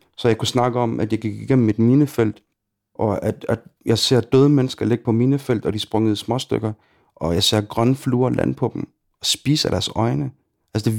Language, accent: Danish, native